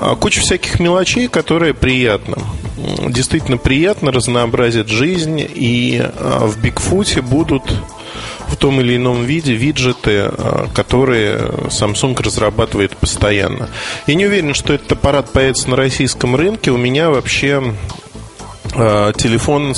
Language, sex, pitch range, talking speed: Russian, male, 110-140 Hz, 110 wpm